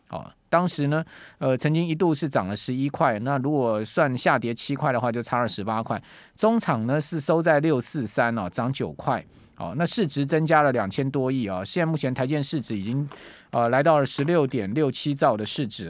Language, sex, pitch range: Chinese, male, 130-170 Hz